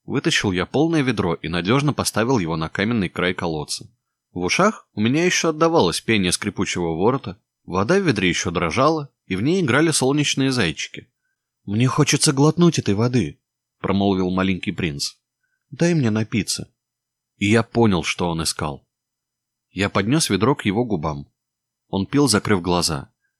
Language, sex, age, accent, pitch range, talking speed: Russian, male, 20-39, native, 95-130 Hz, 160 wpm